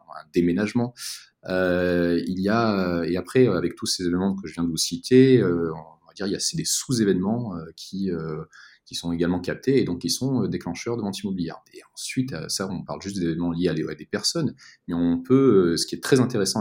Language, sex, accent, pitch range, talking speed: French, male, French, 85-120 Hz, 235 wpm